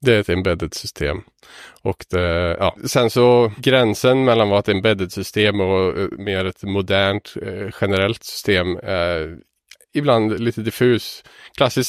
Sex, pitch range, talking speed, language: male, 100-120 Hz, 140 wpm, Swedish